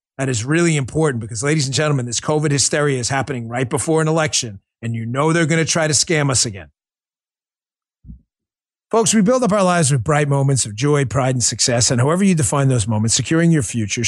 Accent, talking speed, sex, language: American, 215 wpm, male, English